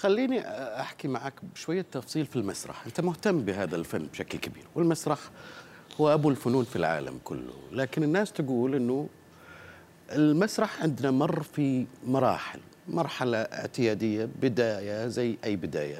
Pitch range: 100-150 Hz